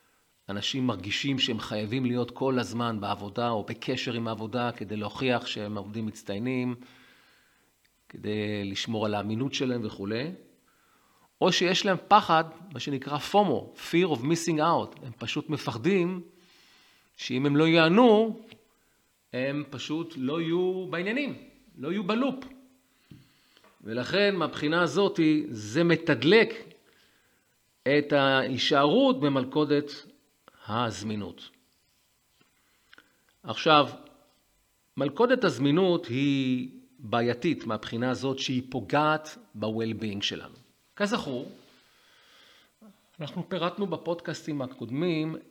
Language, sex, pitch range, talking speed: English, male, 120-170 Hz, 100 wpm